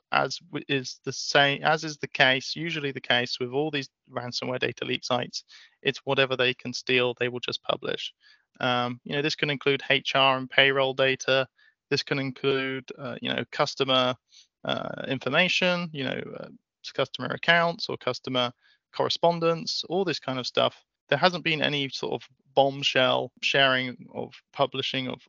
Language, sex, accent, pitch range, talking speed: English, male, British, 125-145 Hz, 165 wpm